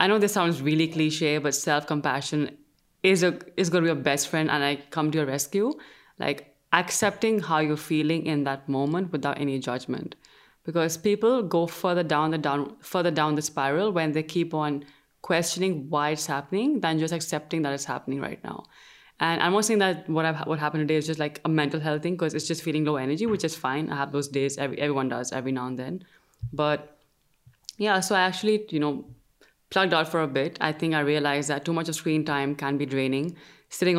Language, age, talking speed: English, 20-39, 215 wpm